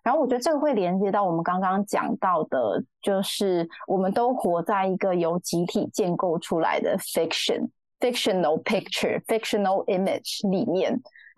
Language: Chinese